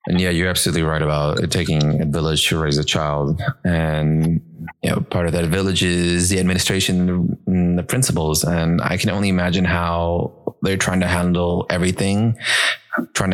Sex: male